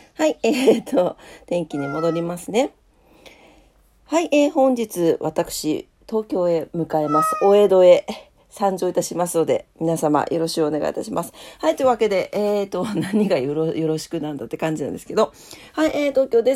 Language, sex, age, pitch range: Japanese, female, 40-59, 170-245 Hz